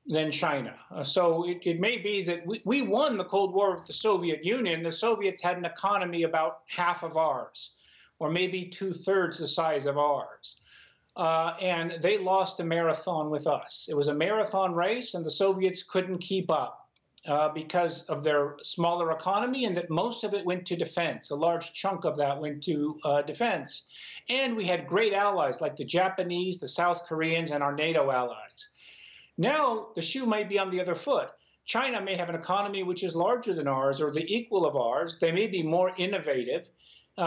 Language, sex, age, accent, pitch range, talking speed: English, male, 50-69, American, 155-190 Hz, 195 wpm